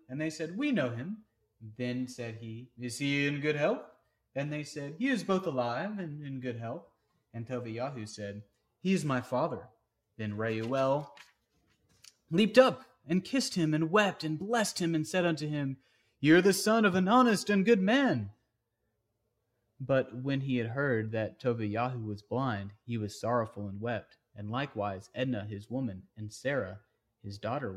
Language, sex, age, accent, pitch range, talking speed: English, male, 30-49, American, 115-155 Hz, 175 wpm